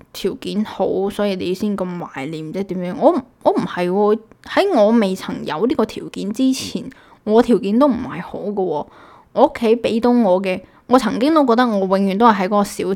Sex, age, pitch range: female, 10-29, 190-235 Hz